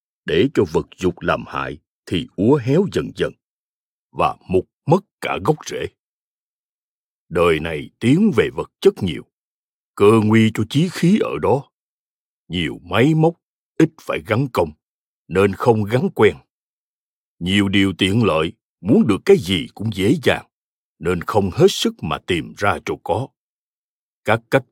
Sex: male